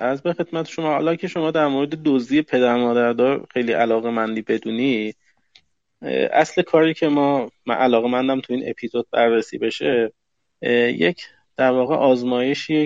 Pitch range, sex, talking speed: 115-135 Hz, male, 155 wpm